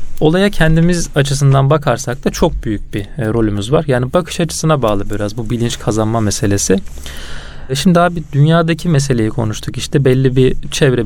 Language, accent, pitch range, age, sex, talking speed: Turkish, native, 105-140 Hz, 30-49, male, 155 wpm